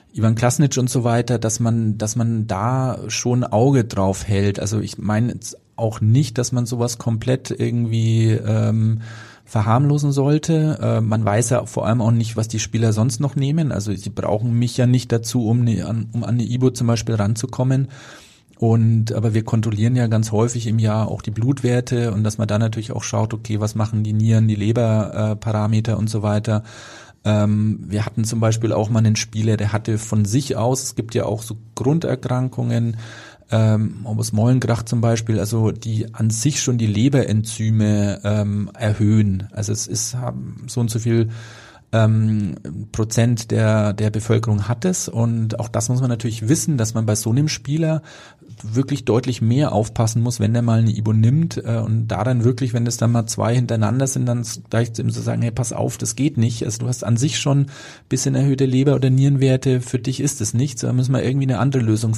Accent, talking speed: German, 200 wpm